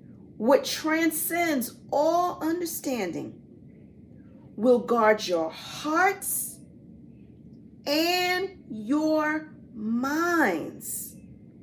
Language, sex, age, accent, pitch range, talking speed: English, female, 40-59, American, 220-315 Hz, 55 wpm